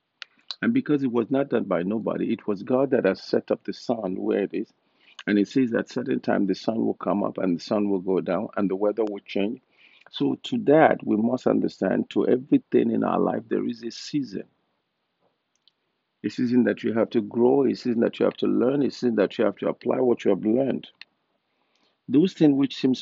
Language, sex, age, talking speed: English, male, 50-69, 225 wpm